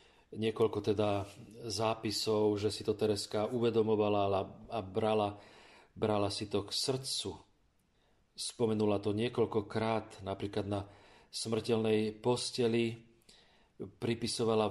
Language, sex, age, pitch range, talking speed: Slovak, male, 40-59, 105-125 Hz, 95 wpm